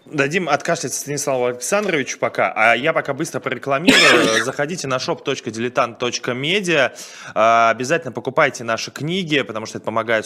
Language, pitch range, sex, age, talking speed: Russian, 100-130 Hz, male, 20-39, 125 wpm